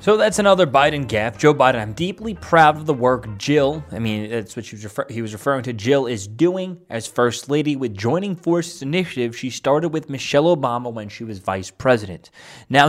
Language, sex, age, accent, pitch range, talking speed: English, male, 20-39, American, 110-145 Hz, 200 wpm